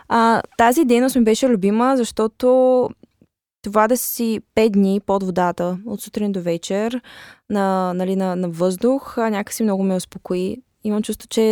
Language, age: Bulgarian, 20-39